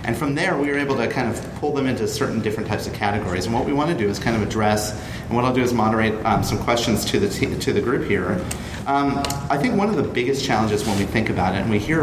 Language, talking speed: English, 295 wpm